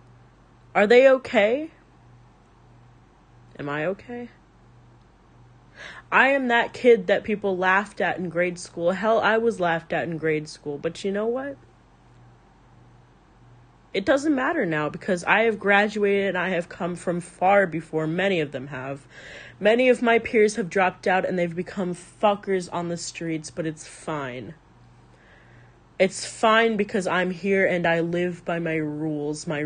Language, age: English, 30-49